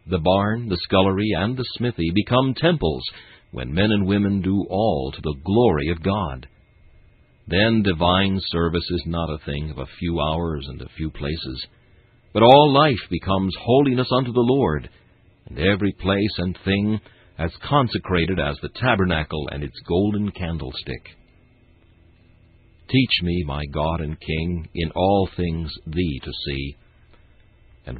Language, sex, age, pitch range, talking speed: English, male, 60-79, 80-110 Hz, 150 wpm